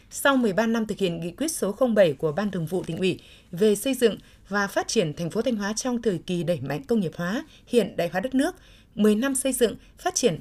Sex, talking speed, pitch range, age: female, 255 wpm, 185-235 Hz, 20-39